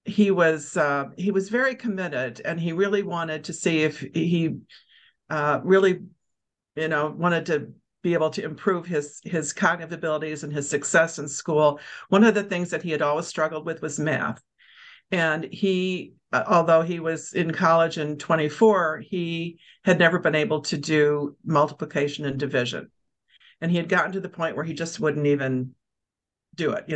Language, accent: English, American